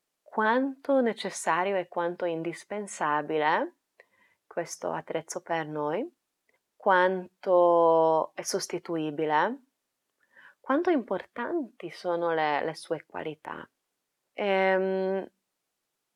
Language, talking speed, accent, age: Italian, 75 wpm, native, 20-39